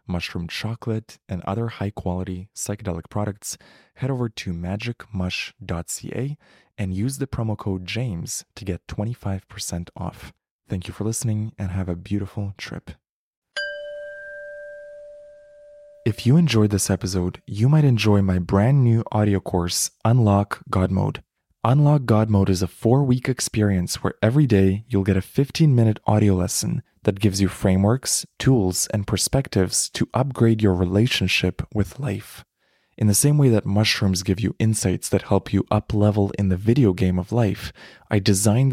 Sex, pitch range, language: male, 95-120 Hz, English